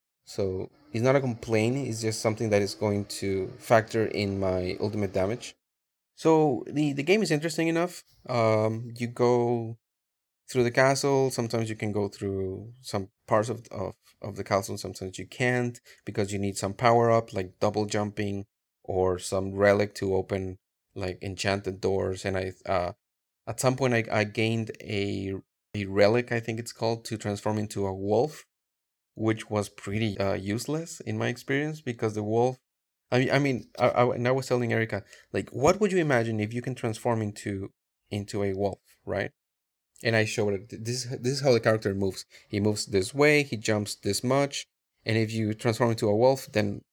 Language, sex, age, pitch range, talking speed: English, male, 30-49, 100-125 Hz, 190 wpm